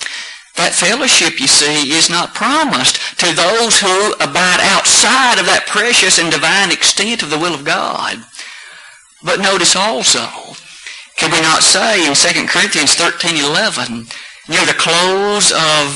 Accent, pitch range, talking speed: American, 170-225 Hz, 145 wpm